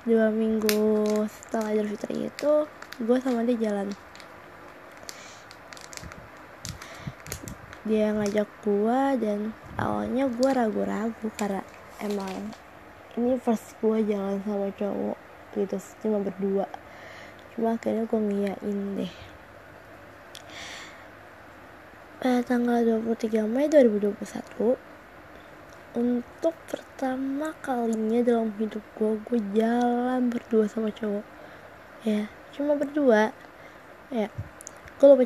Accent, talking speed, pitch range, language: native, 100 wpm, 210-245 Hz, Indonesian